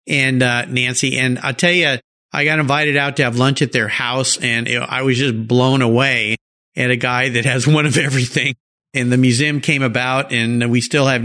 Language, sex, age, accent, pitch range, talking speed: English, male, 50-69, American, 125-175 Hz, 225 wpm